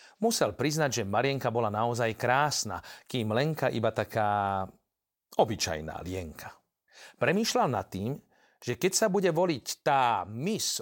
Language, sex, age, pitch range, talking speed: Slovak, male, 40-59, 115-160 Hz, 130 wpm